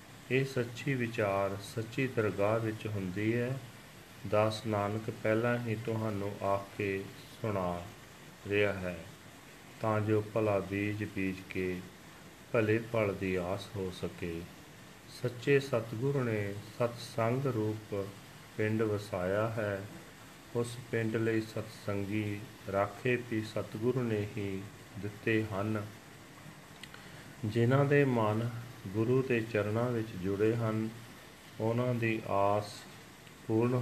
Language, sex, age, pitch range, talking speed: Punjabi, male, 40-59, 100-120 Hz, 100 wpm